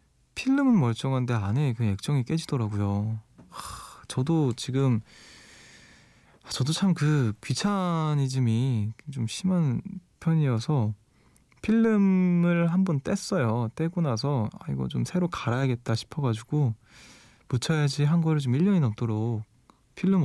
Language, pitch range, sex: Korean, 115-165 Hz, male